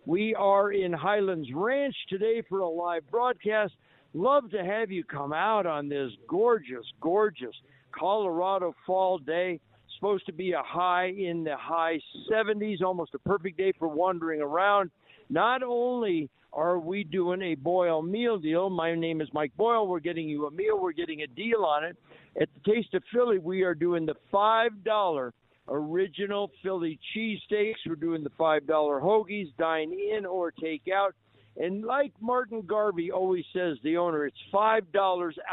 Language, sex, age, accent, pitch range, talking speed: English, male, 60-79, American, 155-200 Hz, 160 wpm